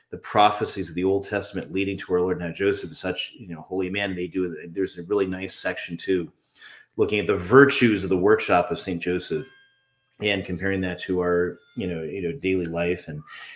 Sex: male